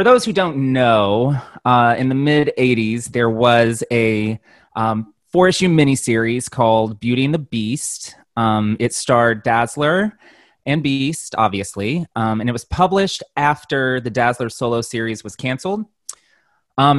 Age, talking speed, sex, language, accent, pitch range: 30-49, 150 wpm, male, English, American, 115-140 Hz